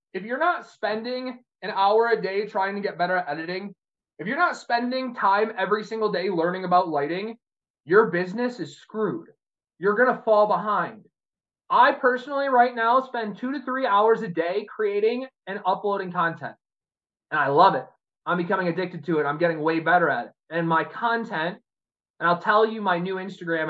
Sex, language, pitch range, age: male, English, 180-250 Hz, 20-39